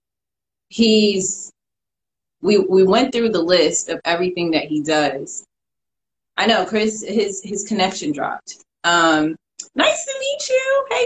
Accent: American